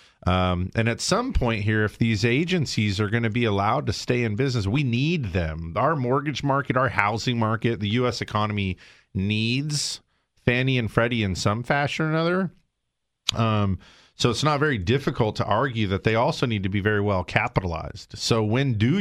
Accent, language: American, English